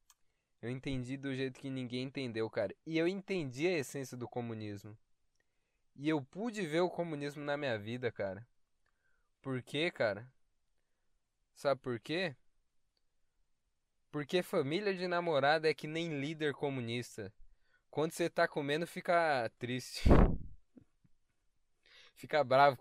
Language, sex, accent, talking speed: Portuguese, male, Brazilian, 125 wpm